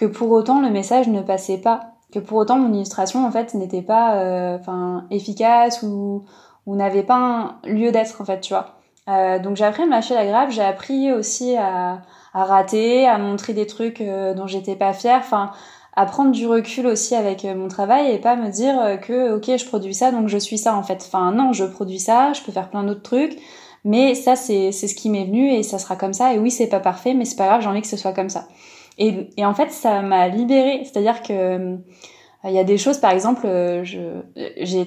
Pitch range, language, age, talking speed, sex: 195-245 Hz, French, 20-39, 235 wpm, female